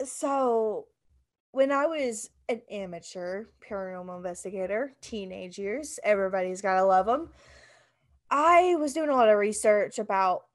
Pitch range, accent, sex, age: 195-225 Hz, American, female, 10-29